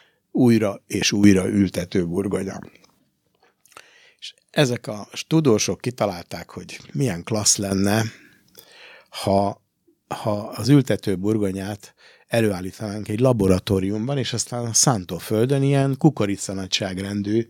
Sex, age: male, 60-79